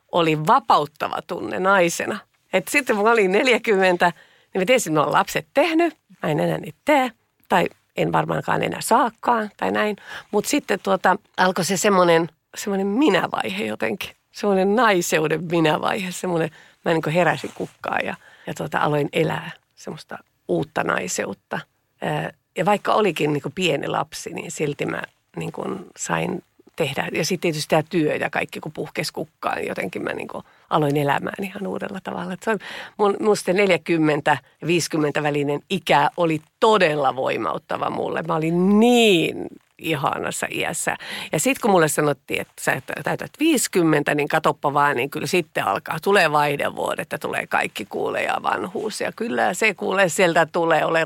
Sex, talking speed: female, 145 wpm